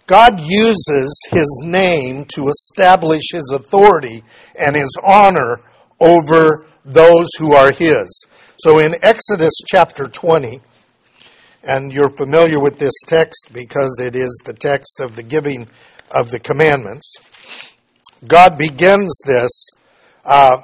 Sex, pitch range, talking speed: male, 140-180 Hz, 120 wpm